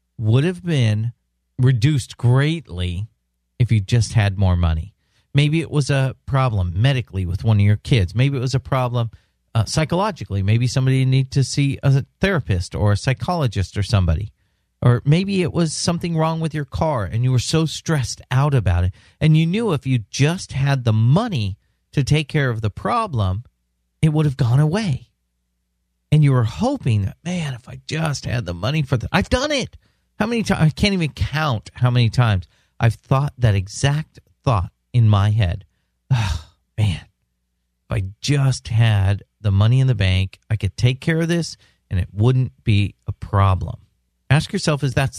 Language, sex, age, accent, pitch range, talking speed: English, male, 40-59, American, 100-150 Hz, 185 wpm